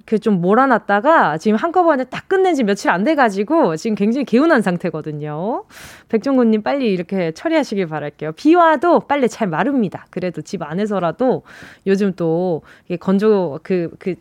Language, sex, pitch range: Korean, female, 190-295 Hz